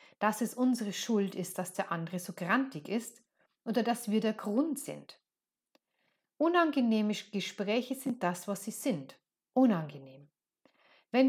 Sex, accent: female, German